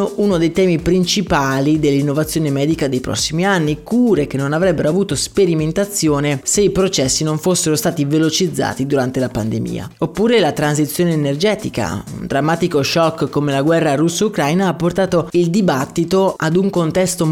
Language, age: Italian, 20-39